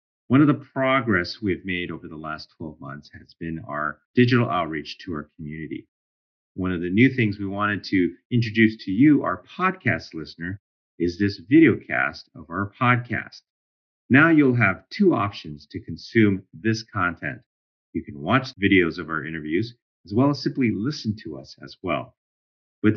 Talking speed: 170 wpm